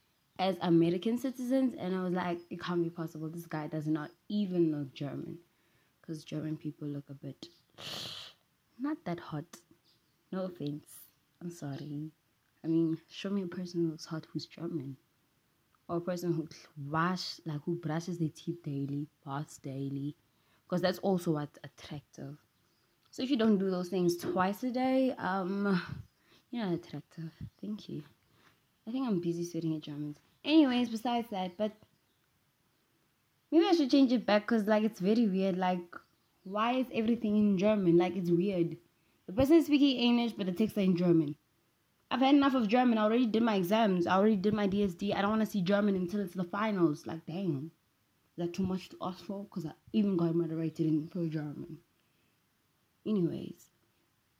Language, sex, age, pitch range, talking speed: English, female, 20-39, 160-210 Hz, 175 wpm